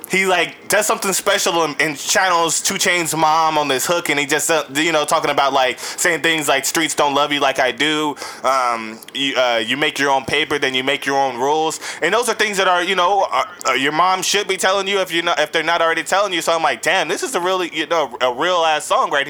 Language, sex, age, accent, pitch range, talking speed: English, male, 20-39, American, 140-175 Hz, 265 wpm